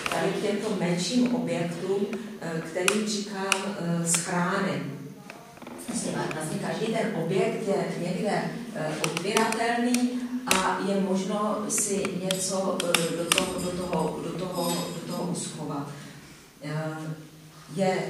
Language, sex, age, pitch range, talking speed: Slovak, female, 40-59, 175-210 Hz, 75 wpm